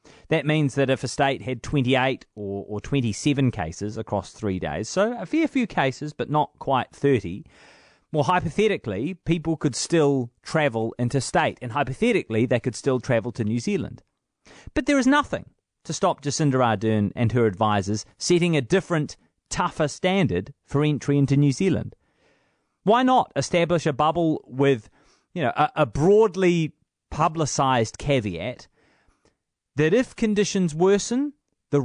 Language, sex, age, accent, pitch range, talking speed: English, male, 30-49, Australian, 115-165 Hz, 150 wpm